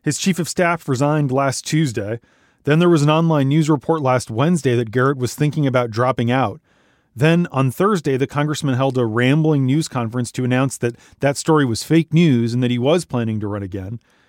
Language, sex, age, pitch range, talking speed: English, male, 30-49, 125-155 Hz, 205 wpm